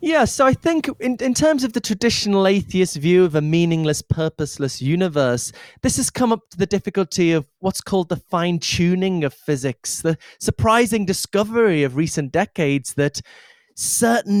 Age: 20-39